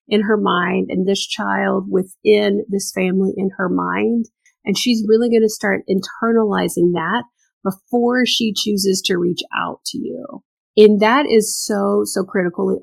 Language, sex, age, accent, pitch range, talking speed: English, female, 30-49, American, 185-220 Hz, 160 wpm